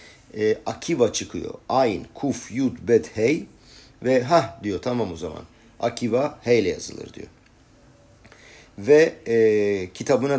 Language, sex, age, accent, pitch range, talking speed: Turkish, male, 50-69, native, 100-130 Hz, 125 wpm